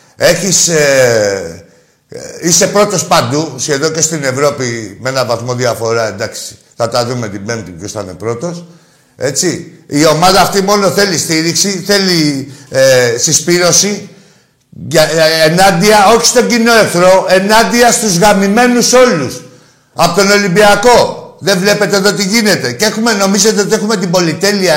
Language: Greek